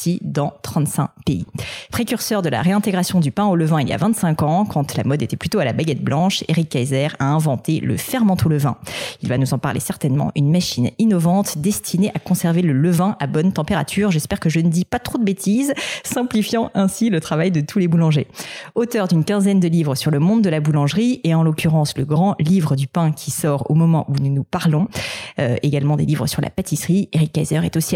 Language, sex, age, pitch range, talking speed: French, female, 30-49, 145-190 Hz, 225 wpm